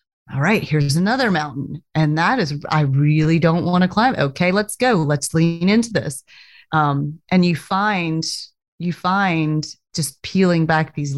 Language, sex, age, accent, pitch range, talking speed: English, female, 30-49, American, 145-185 Hz, 165 wpm